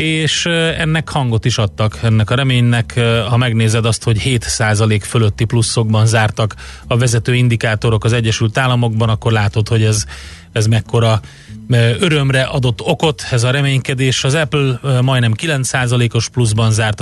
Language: Hungarian